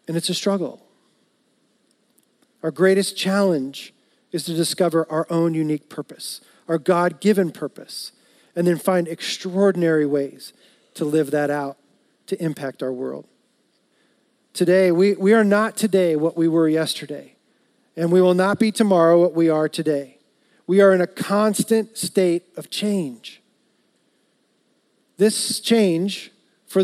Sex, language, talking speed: male, English, 135 wpm